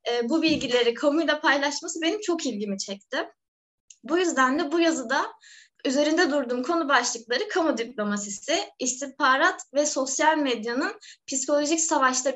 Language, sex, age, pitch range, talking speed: Turkish, female, 20-39, 255-325 Hz, 120 wpm